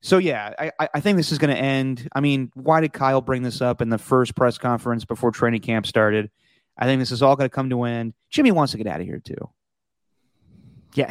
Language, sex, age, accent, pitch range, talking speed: English, male, 30-49, American, 125-170 Hz, 250 wpm